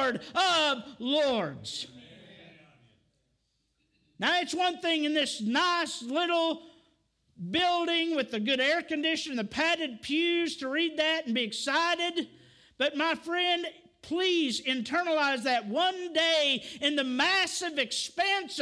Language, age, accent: English, 50-69, American